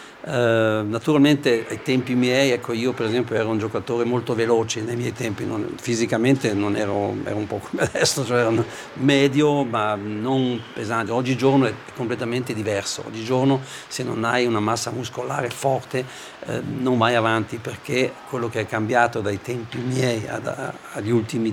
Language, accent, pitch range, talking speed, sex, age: Italian, native, 110-130 Hz, 160 wpm, male, 60-79